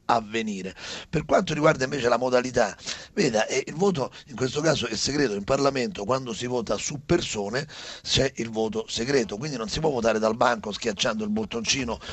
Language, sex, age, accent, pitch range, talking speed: Italian, male, 40-59, native, 125-170 Hz, 180 wpm